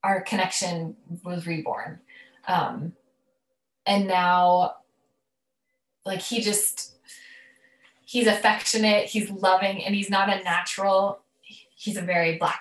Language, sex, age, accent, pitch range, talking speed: English, female, 10-29, American, 175-235 Hz, 110 wpm